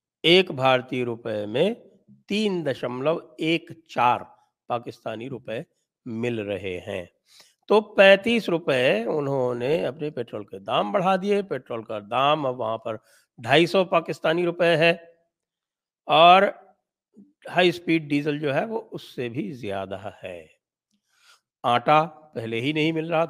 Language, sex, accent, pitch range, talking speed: English, male, Indian, 130-175 Hz, 120 wpm